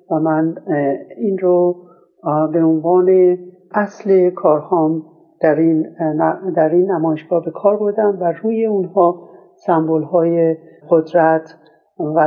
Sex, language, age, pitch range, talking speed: male, Persian, 60-79, 155-180 Hz, 100 wpm